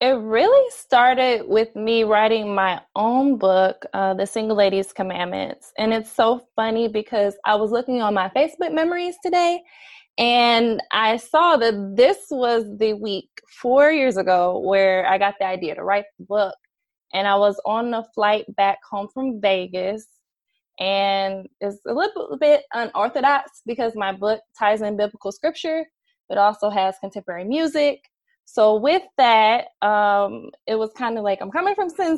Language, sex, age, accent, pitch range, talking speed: English, female, 20-39, American, 200-255 Hz, 165 wpm